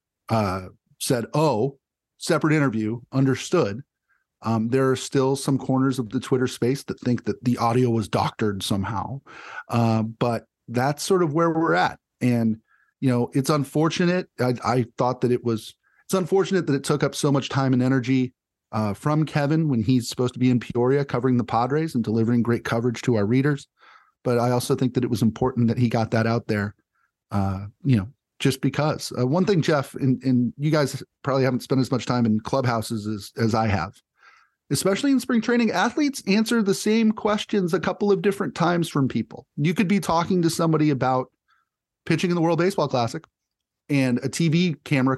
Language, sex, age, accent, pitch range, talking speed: English, male, 30-49, American, 120-155 Hz, 195 wpm